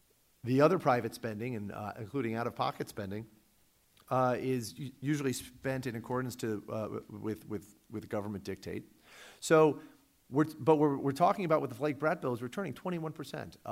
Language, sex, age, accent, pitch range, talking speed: English, male, 40-59, American, 110-150 Hz, 170 wpm